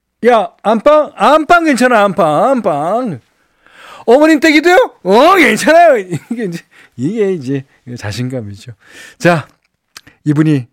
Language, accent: Korean, native